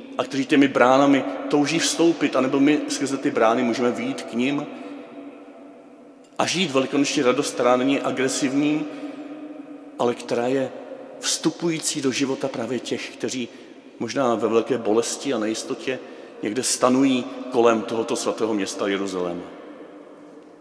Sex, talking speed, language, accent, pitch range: male, 120 wpm, Czech, native, 135-170 Hz